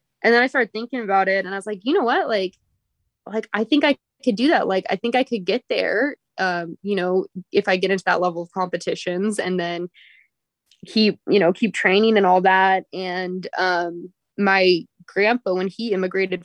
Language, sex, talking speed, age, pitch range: English, female, 210 wpm, 20-39, 180-205 Hz